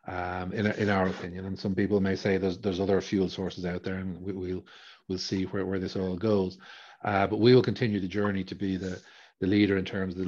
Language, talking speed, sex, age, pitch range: English, 255 wpm, male, 40-59, 95-105 Hz